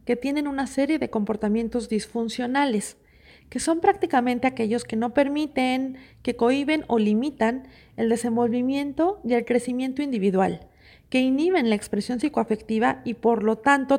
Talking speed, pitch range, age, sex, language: 140 wpm, 215-265 Hz, 40-59, female, Spanish